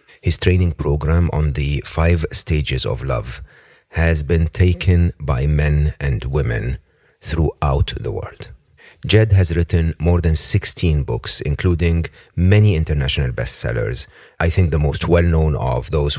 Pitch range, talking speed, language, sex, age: 70-90 Hz, 135 wpm, English, male, 40-59